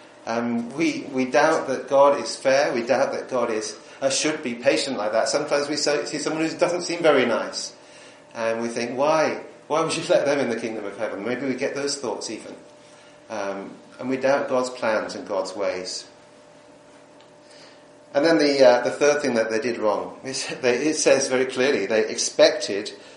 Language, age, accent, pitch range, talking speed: English, 40-59, British, 125-180 Hz, 195 wpm